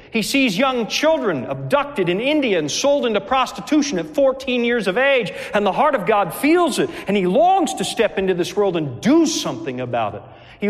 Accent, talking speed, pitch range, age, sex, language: American, 210 wpm, 190-270 Hz, 40-59, male, English